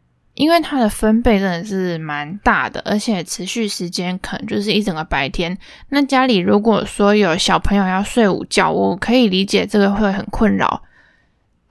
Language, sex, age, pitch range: Chinese, female, 20-39, 190-240 Hz